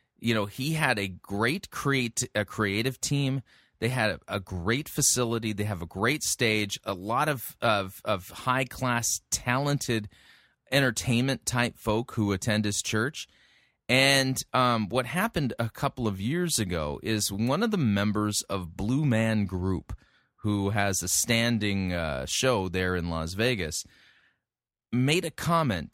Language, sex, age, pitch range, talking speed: English, male, 30-49, 100-130 Hz, 145 wpm